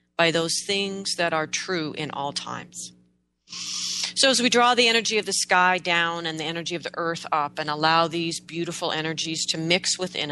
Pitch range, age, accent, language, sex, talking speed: 150-185 Hz, 40-59, American, English, female, 200 wpm